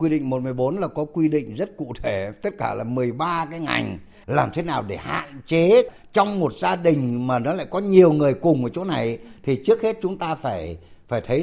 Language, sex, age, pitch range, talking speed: Vietnamese, male, 60-79, 125-195 Hz, 230 wpm